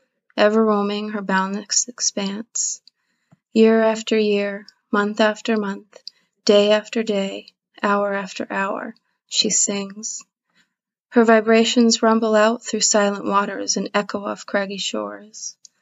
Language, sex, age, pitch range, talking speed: English, female, 20-39, 200-225 Hz, 120 wpm